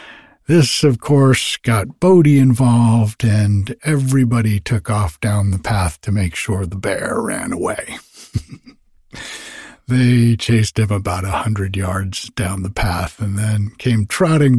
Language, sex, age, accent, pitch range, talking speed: English, male, 60-79, American, 100-135 Hz, 140 wpm